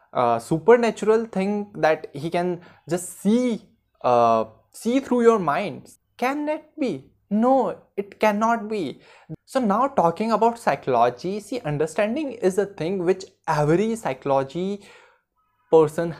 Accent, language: native, Hindi